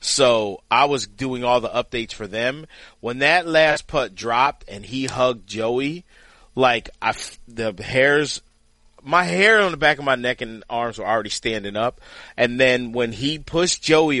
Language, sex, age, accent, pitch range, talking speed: English, male, 40-59, American, 115-160 Hz, 175 wpm